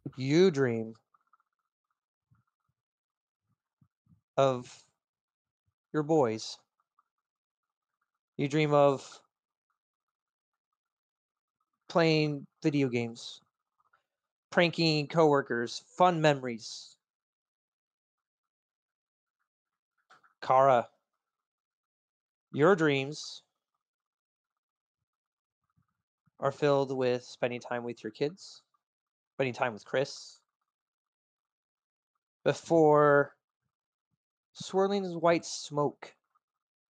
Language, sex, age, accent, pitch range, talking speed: English, male, 30-49, American, 125-160 Hz, 55 wpm